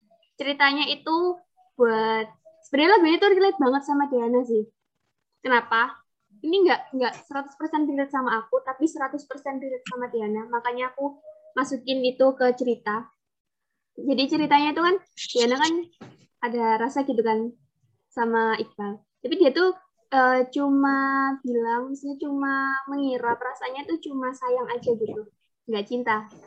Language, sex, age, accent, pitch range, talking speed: Indonesian, female, 20-39, native, 235-295 Hz, 130 wpm